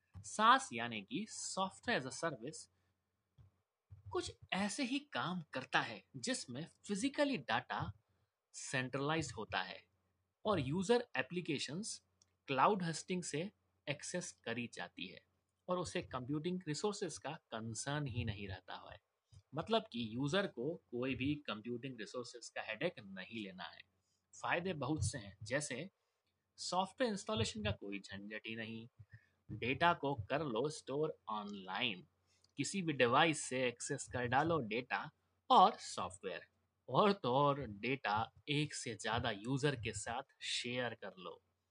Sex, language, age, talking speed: male, Hindi, 30-49, 130 wpm